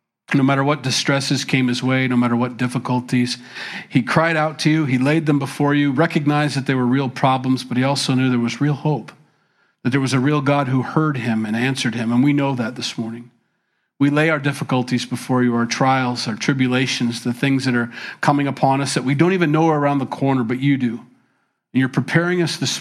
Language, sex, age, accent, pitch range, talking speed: English, male, 40-59, American, 120-145 Hz, 230 wpm